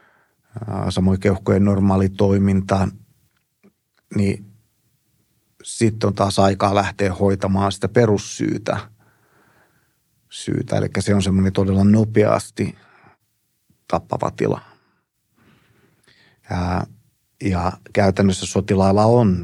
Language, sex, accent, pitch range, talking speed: Finnish, male, native, 95-110 Hz, 75 wpm